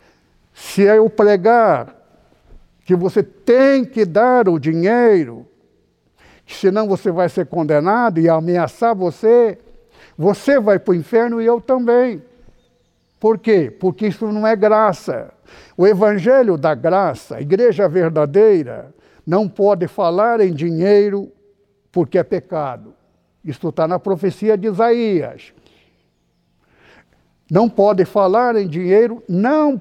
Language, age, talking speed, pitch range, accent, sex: Portuguese, 60-79, 120 wpm, 175-235 Hz, Brazilian, male